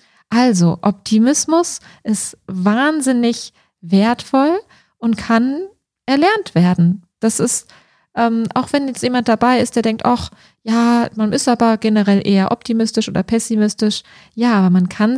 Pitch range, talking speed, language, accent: 190-250 Hz, 135 wpm, German, German